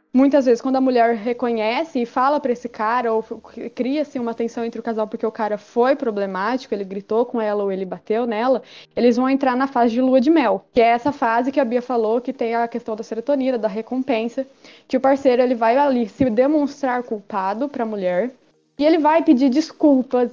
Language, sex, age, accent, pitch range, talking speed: Portuguese, female, 20-39, Brazilian, 225-275 Hz, 220 wpm